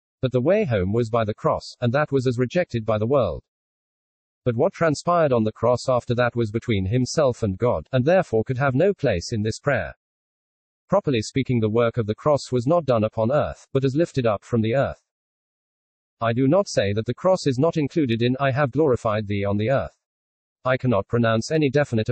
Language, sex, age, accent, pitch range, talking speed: English, male, 40-59, British, 110-135 Hz, 215 wpm